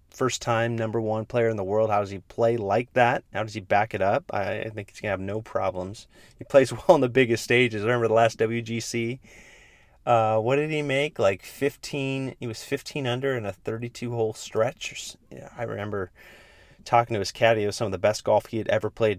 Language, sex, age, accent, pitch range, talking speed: English, male, 30-49, American, 100-120 Hz, 230 wpm